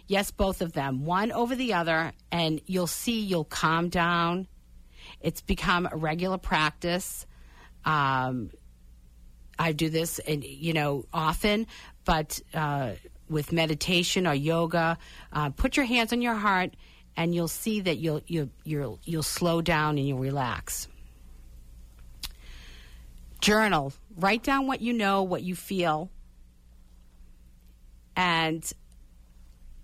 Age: 50-69